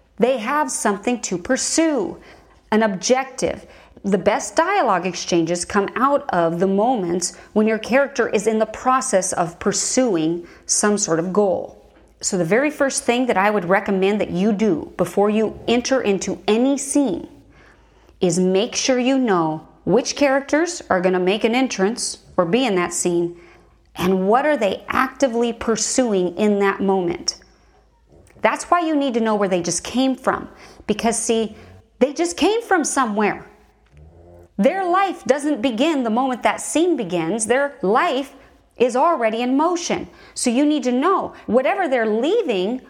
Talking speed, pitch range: 160 wpm, 200-275 Hz